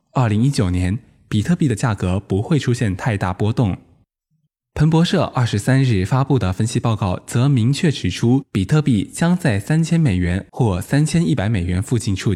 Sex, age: male, 20-39